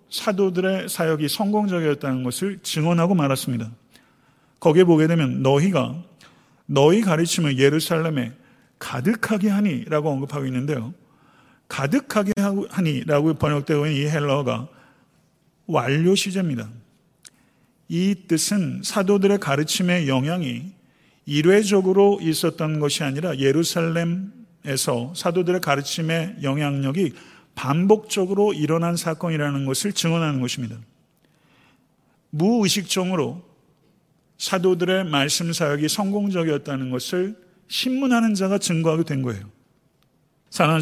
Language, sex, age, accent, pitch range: Korean, male, 40-59, native, 145-190 Hz